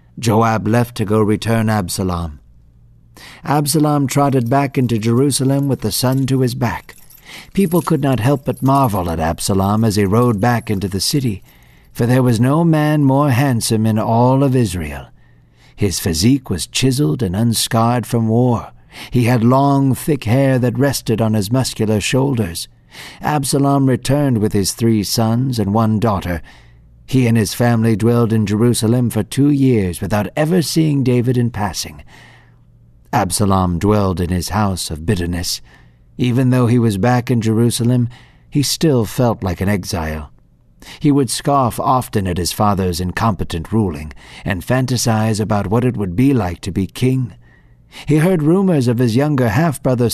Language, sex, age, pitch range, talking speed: English, male, 60-79, 95-130 Hz, 160 wpm